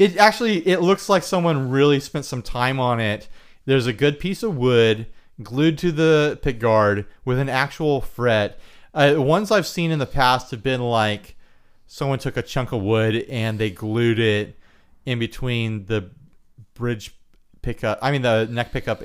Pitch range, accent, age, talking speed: 100-135 Hz, American, 30-49, 175 wpm